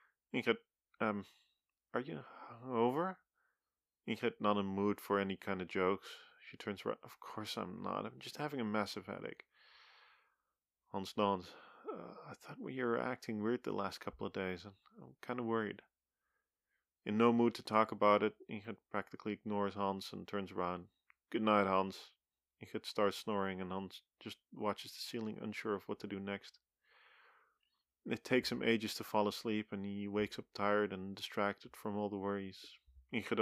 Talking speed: 175 wpm